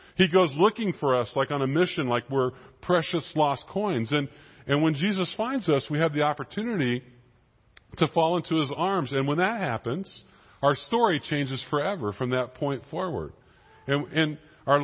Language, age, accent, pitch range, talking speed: English, 40-59, American, 125-170 Hz, 180 wpm